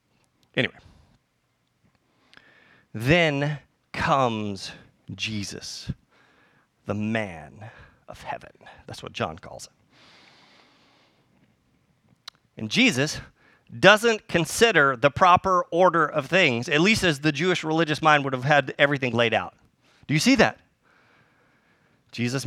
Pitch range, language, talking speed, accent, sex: 145-240 Hz, English, 105 wpm, American, male